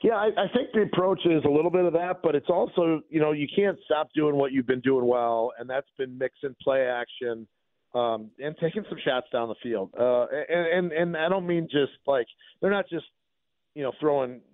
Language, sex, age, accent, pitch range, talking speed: English, male, 40-59, American, 115-155 Hz, 225 wpm